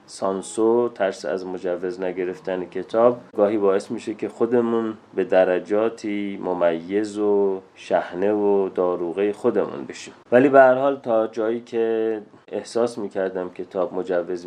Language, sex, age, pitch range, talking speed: Persian, male, 30-49, 95-115 Hz, 130 wpm